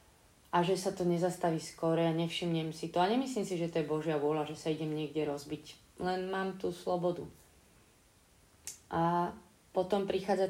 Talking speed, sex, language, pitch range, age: 175 wpm, female, Slovak, 155-180 Hz, 30-49